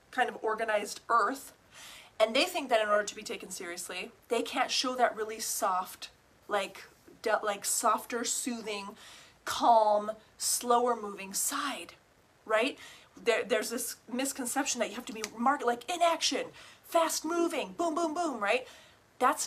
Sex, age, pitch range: female, 30-49, 210-260 Hz